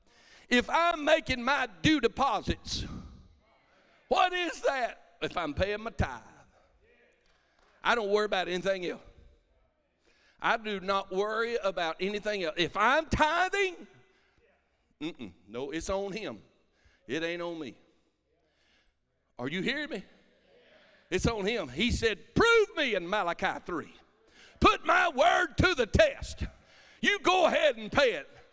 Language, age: English, 60-79